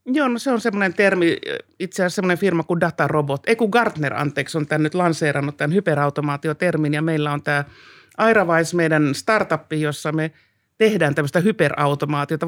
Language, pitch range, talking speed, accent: Finnish, 150-175 Hz, 155 wpm, native